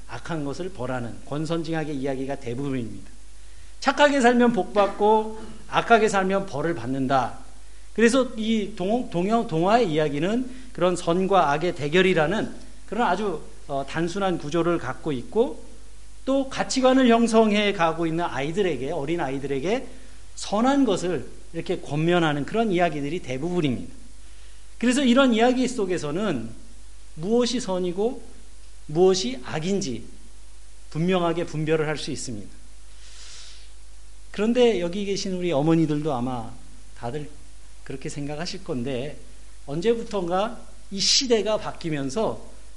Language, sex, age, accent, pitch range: Korean, male, 40-59, native, 145-215 Hz